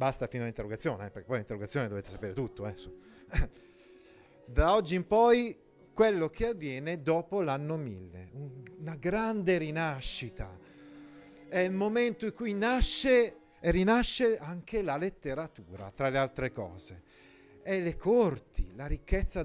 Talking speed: 135 wpm